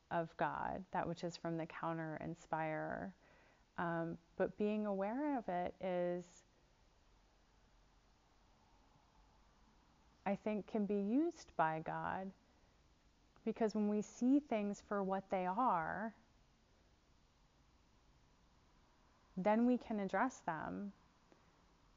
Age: 30-49